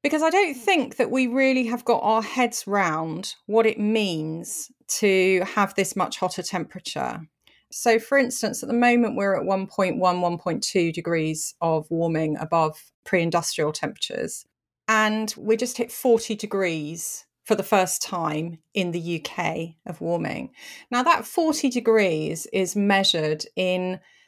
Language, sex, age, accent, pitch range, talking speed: English, female, 30-49, British, 180-240 Hz, 145 wpm